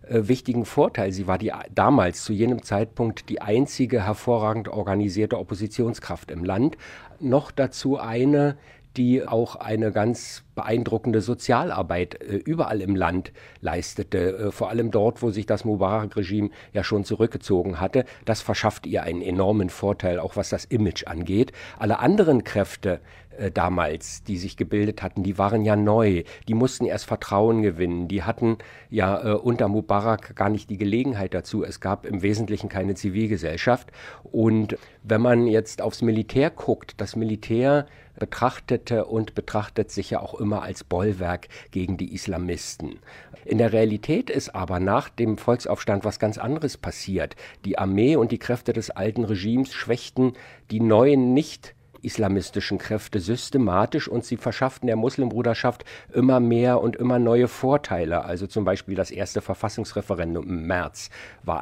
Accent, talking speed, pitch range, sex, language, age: German, 150 wpm, 100-120 Hz, male, German, 50-69